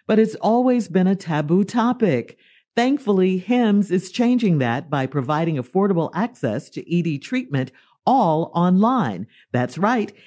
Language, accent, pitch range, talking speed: English, American, 160-230 Hz, 135 wpm